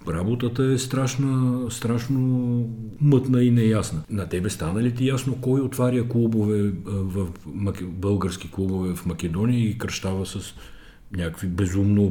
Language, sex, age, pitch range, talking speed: Bulgarian, male, 50-69, 85-115 Hz, 130 wpm